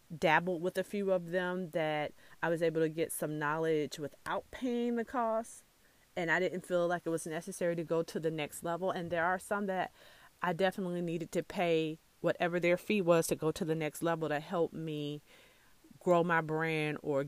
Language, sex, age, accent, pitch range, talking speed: English, female, 30-49, American, 160-190 Hz, 205 wpm